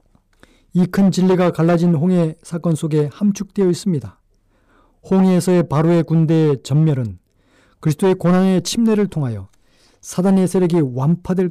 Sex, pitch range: male, 130-180 Hz